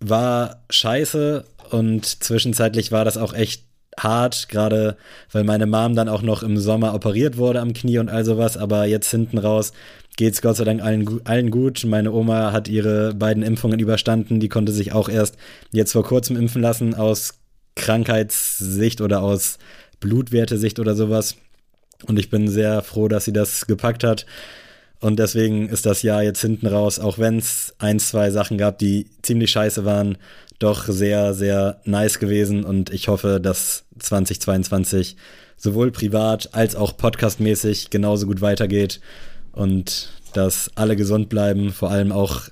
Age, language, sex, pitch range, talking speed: 20-39, German, male, 105-115 Hz, 165 wpm